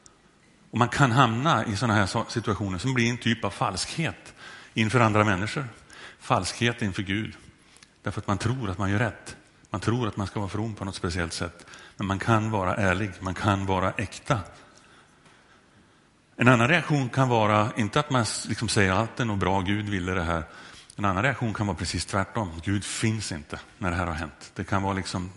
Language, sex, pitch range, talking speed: Swedish, male, 95-115 Hz, 200 wpm